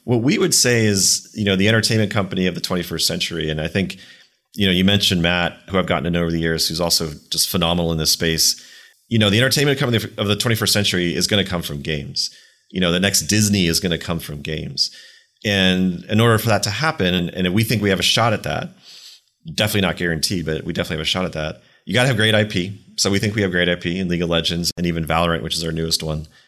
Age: 30-49